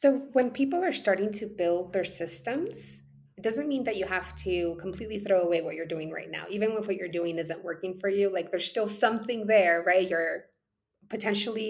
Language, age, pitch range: English, 30-49, 175-215 Hz